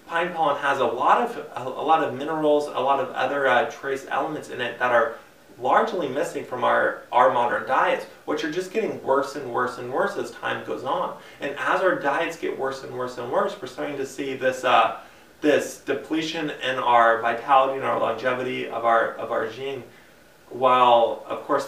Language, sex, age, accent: English, male, 20-39, American